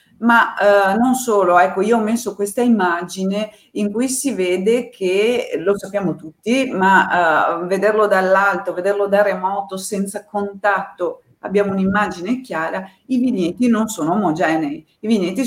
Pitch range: 180-220 Hz